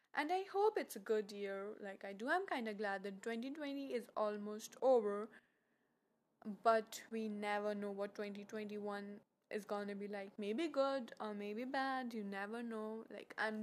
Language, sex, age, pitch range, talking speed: English, female, 10-29, 210-260 Hz, 175 wpm